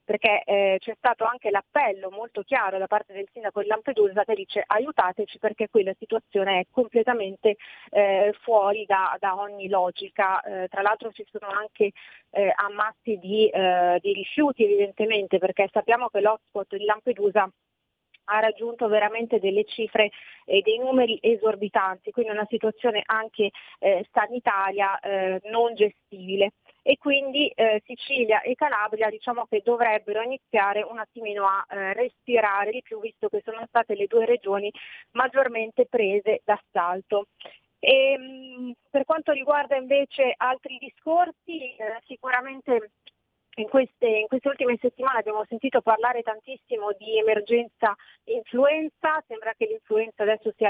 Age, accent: 30-49, native